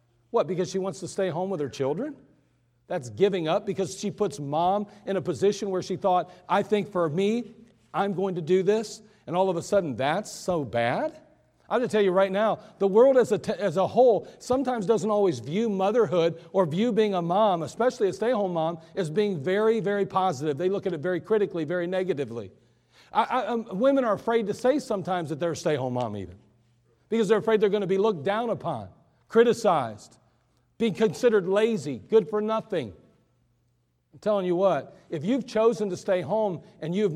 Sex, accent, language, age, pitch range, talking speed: male, American, English, 40-59, 165-220 Hz, 205 wpm